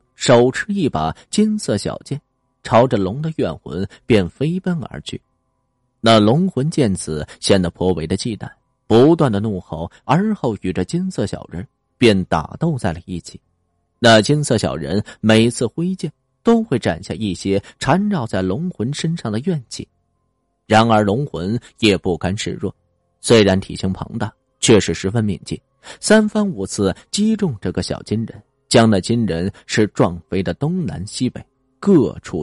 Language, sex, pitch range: Chinese, male, 95-135 Hz